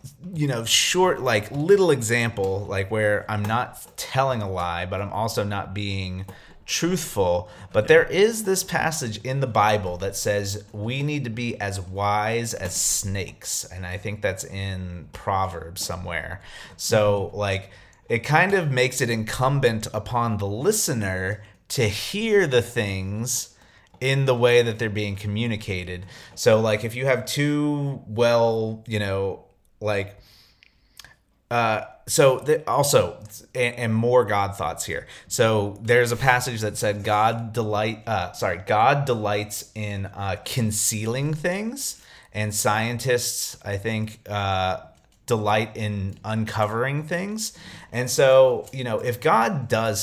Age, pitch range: 30-49, 100-125 Hz